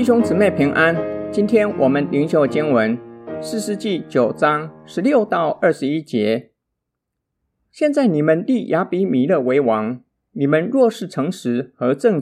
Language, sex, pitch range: Chinese, male, 130-205 Hz